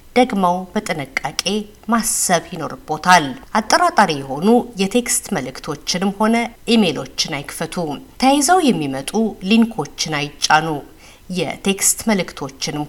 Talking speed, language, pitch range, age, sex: 80 wpm, Amharic, 155-245 Hz, 50-69, female